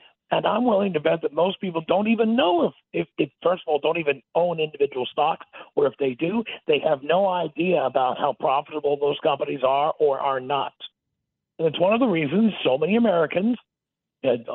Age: 50-69